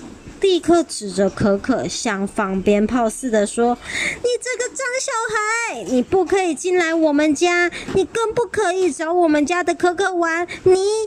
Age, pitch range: 30-49, 230-355 Hz